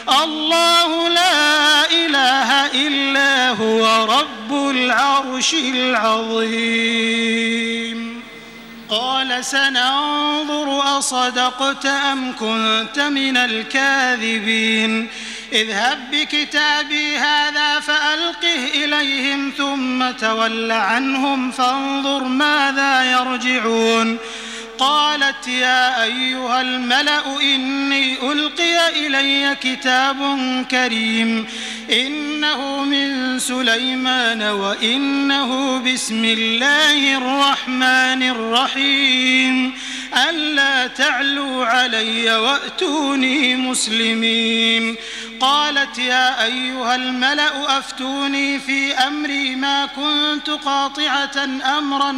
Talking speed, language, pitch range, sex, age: 70 wpm, Arabic, 245-280 Hz, male, 30-49